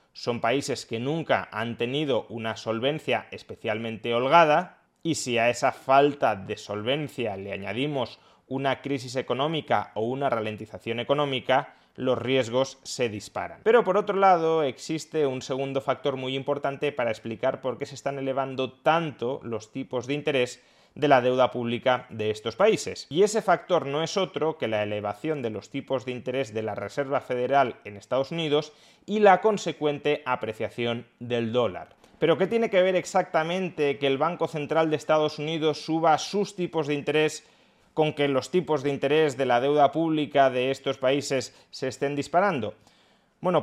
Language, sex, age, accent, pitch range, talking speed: Spanish, male, 20-39, Spanish, 125-160 Hz, 165 wpm